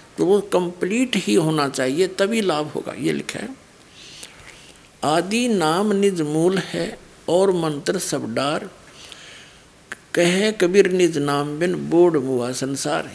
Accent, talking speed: native, 125 wpm